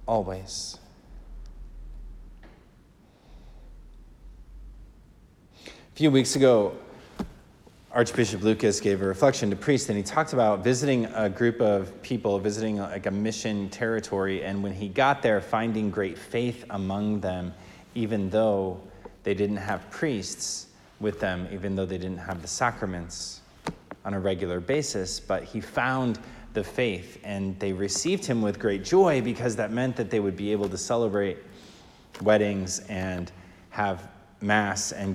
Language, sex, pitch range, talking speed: English, male, 95-115 Hz, 140 wpm